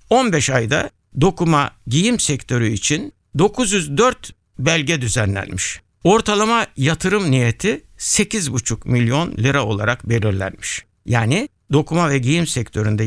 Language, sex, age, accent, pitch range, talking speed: Turkish, male, 60-79, native, 115-165 Hz, 100 wpm